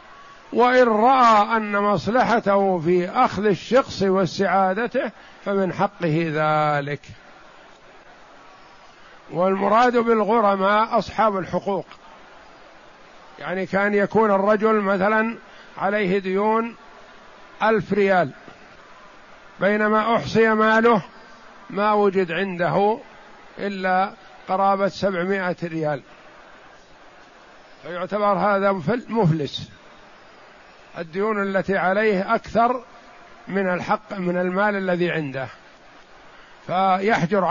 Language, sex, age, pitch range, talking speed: Arabic, male, 50-69, 185-215 Hz, 75 wpm